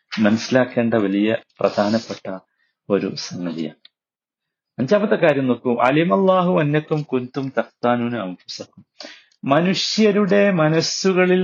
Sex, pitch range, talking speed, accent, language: male, 105-165 Hz, 80 wpm, native, Malayalam